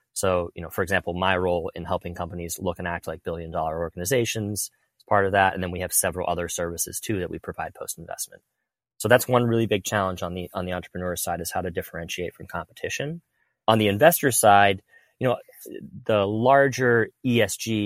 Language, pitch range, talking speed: English, 90-105 Hz, 200 wpm